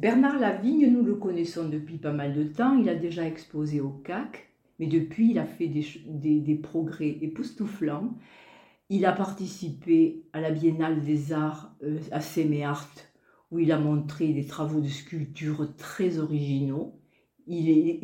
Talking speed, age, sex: 160 wpm, 50-69, female